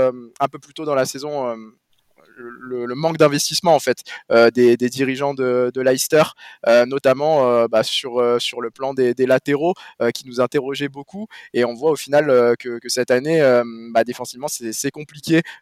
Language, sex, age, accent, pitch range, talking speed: French, male, 20-39, French, 130-160 Hz, 175 wpm